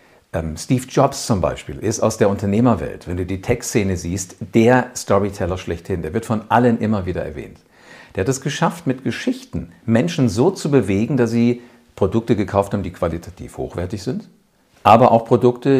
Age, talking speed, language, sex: 50-69, 170 wpm, German, male